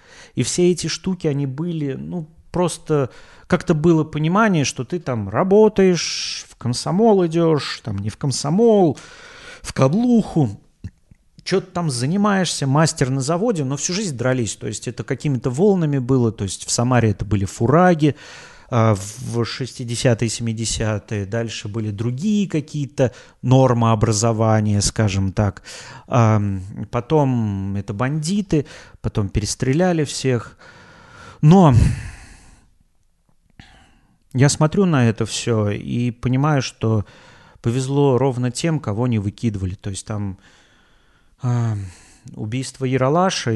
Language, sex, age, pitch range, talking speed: Russian, male, 30-49, 110-155 Hz, 115 wpm